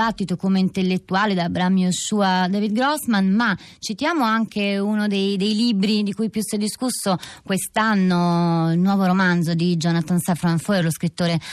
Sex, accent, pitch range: female, native, 165-205 Hz